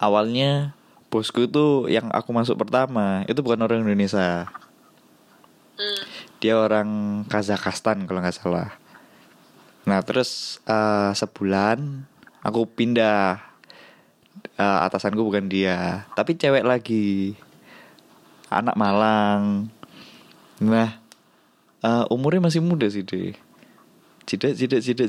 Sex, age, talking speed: male, 20-39, 100 wpm